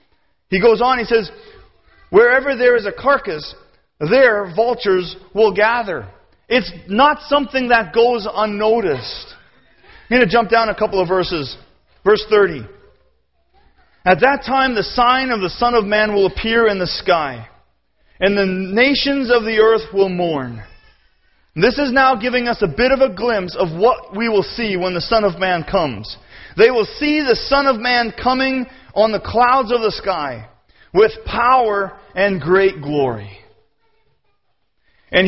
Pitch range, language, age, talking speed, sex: 195-260 Hz, English, 40-59, 160 wpm, male